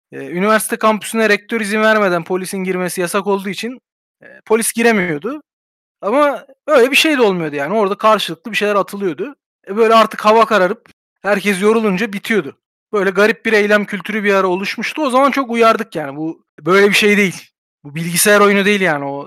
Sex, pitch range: male, 185-235 Hz